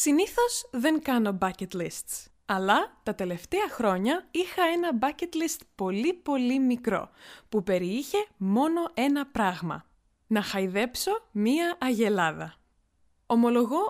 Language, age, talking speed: Greek, 20-39, 110 wpm